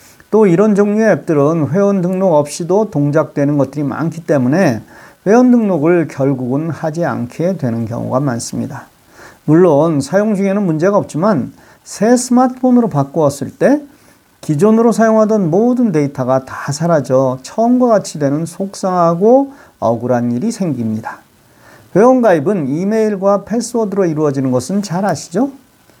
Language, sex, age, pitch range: Korean, male, 40-59, 140-210 Hz